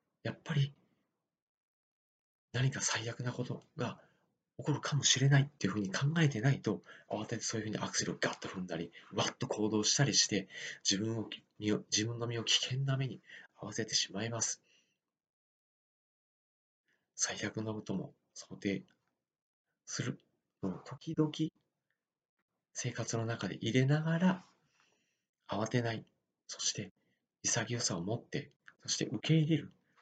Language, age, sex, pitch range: Japanese, 40-59, male, 105-145 Hz